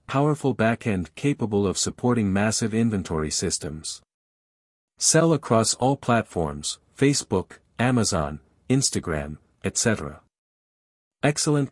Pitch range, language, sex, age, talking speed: 90-125 Hz, English, male, 50-69, 85 wpm